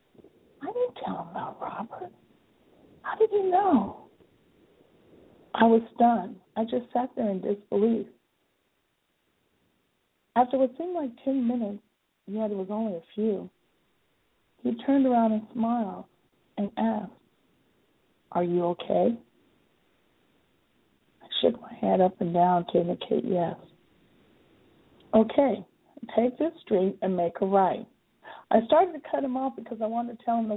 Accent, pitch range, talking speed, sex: American, 205-265 Hz, 145 wpm, female